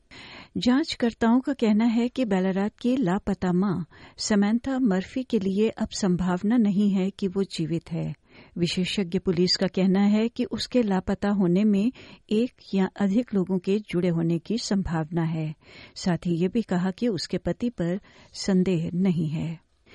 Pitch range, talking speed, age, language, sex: 180-225 Hz, 160 wpm, 50-69, Hindi, female